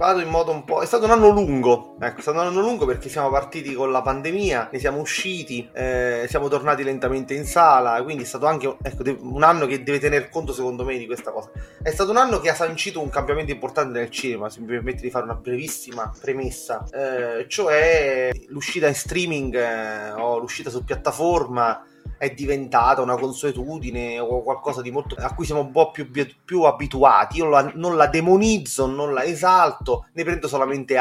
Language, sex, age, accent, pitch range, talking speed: Italian, male, 30-49, native, 125-165 Hz, 175 wpm